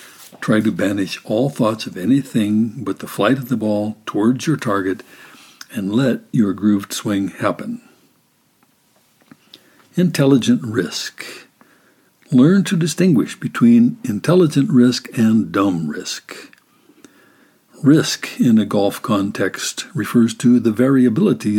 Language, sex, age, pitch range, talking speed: English, male, 60-79, 105-150 Hz, 115 wpm